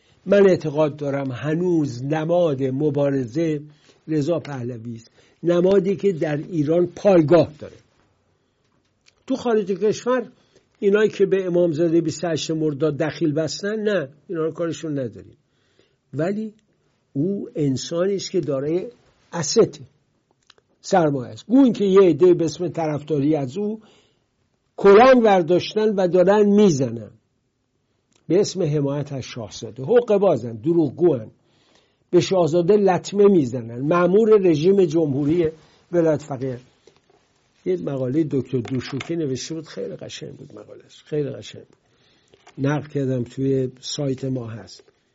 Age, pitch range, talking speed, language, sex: 60-79, 135-195 Hz, 115 wpm, English, male